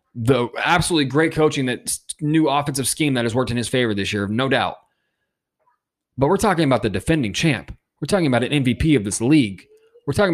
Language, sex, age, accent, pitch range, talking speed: English, male, 20-39, American, 120-160 Hz, 205 wpm